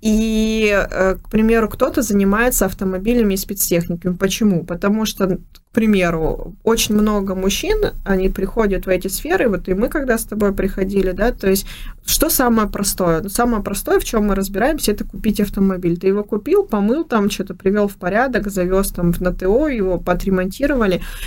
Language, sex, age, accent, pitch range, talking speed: Russian, female, 20-39, native, 180-215 Hz, 165 wpm